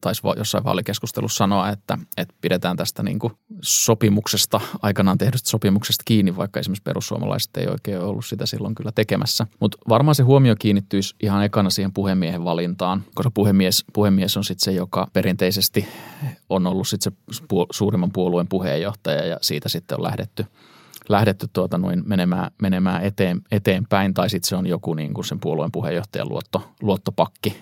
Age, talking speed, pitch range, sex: 20-39, 155 wpm, 95-115 Hz, male